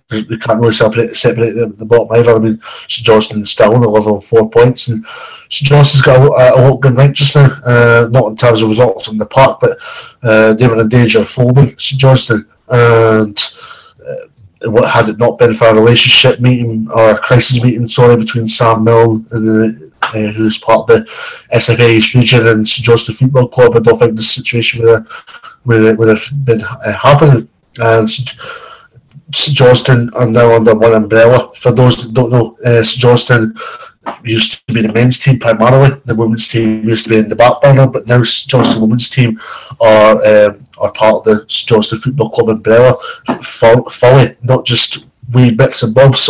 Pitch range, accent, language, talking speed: 110-130 Hz, British, English, 200 wpm